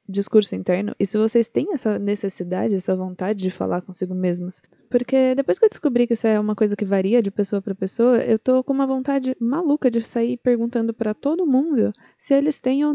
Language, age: Portuguese, 20-39